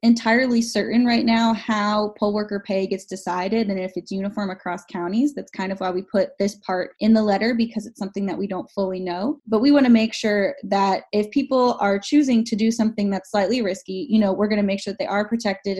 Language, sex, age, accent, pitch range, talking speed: English, female, 10-29, American, 195-235 Hz, 240 wpm